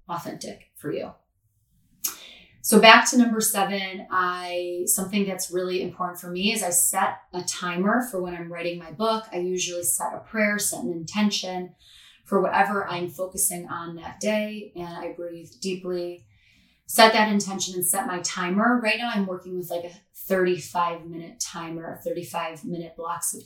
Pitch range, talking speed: 175-205 Hz, 170 wpm